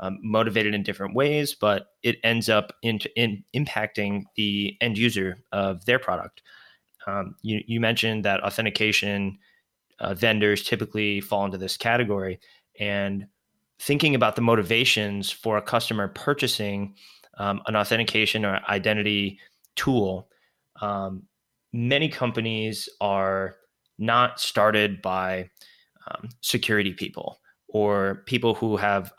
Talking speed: 125 wpm